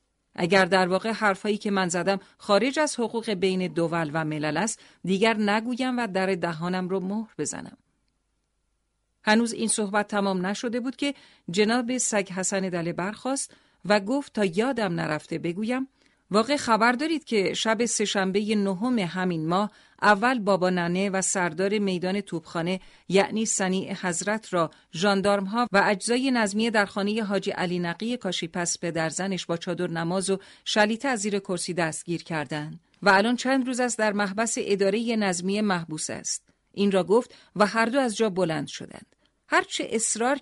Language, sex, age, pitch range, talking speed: Persian, female, 40-59, 185-225 Hz, 160 wpm